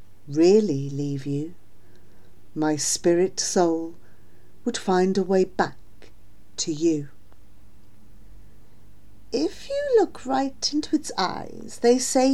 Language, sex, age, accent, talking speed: English, female, 50-69, British, 105 wpm